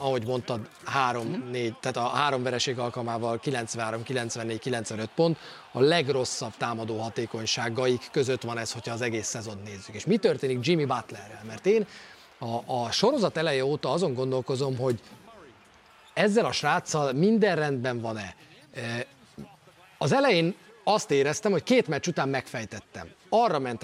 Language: Hungarian